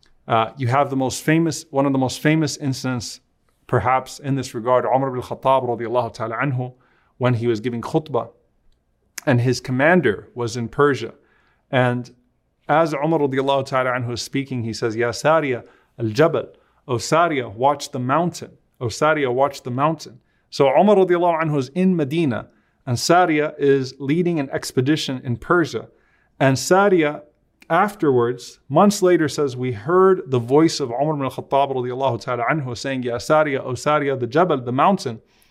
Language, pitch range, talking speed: English, 125-145 Hz, 165 wpm